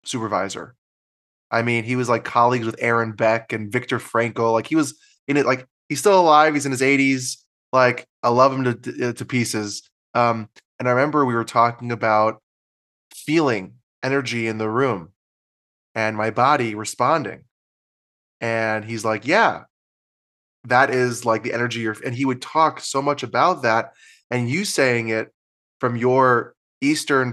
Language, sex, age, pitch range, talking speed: English, male, 20-39, 110-130 Hz, 165 wpm